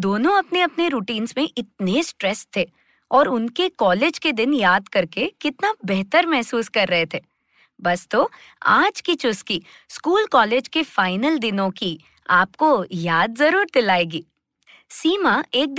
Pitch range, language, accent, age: 210-335 Hz, Hindi, native, 20-39